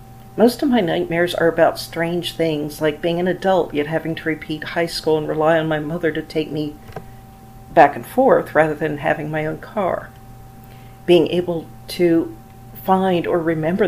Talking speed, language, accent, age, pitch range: 175 wpm, English, American, 50-69, 130-175 Hz